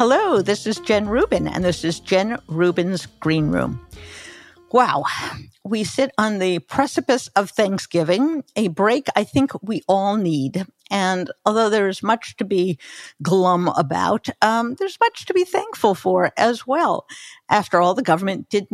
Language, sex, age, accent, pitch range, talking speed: English, female, 50-69, American, 180-240 Hz, 155 wpm